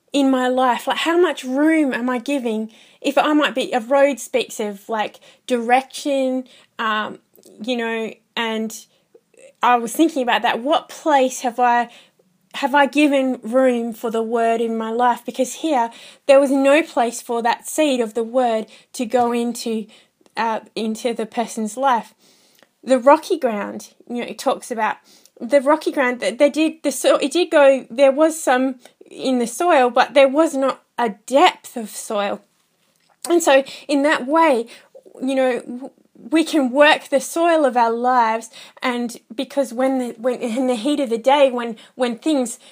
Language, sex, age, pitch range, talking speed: English, female, 20-39, 235-280 Hz, 175 wpm